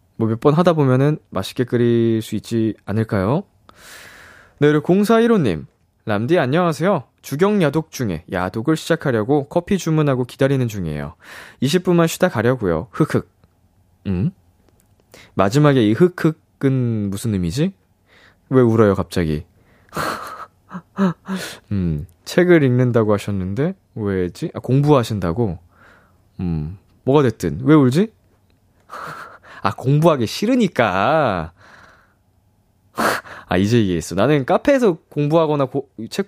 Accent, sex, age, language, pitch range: native, male, 20-39, Korean, 95-160 Hz